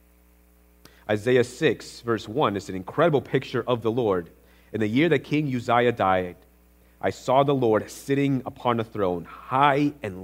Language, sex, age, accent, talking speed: English, male, 30-49, American, 165 wpm